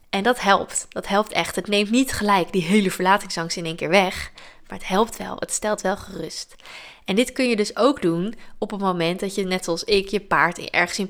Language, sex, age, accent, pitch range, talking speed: Dutch, female, 20-39, Dutch, 185-225 Hz, 240 wpm